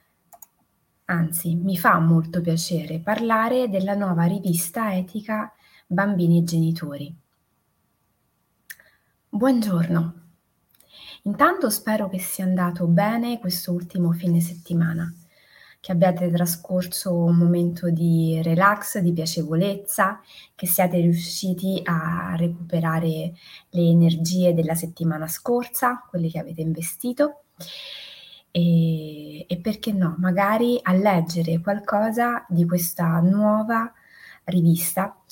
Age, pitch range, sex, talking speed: 20-39, 170-210 Hz, female, 100 wpm